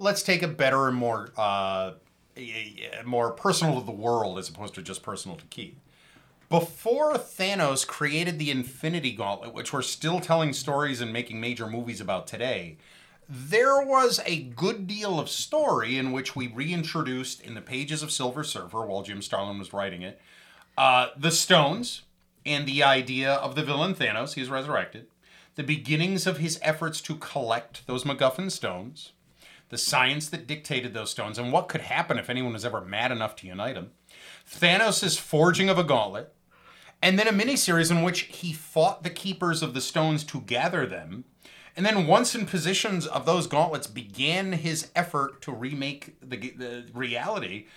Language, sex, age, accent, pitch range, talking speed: English, male, 30-49, American, 120-170 Hz, 170 wpm